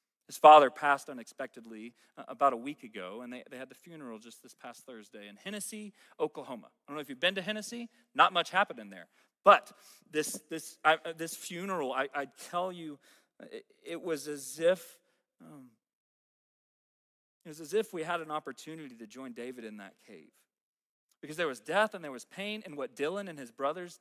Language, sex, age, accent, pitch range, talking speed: English, male, 30-49, American, 140-190 Hz, 195 wpm